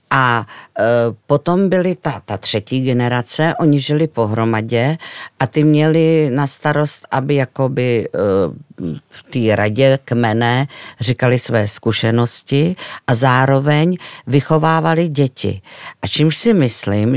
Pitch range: 125-150 Hz